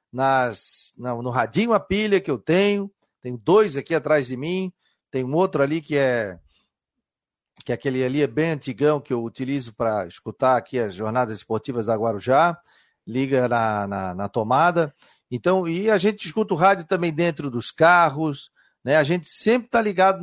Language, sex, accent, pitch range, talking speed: Portuguese, male, Brazilian, 130-180 Hz, 180 wpm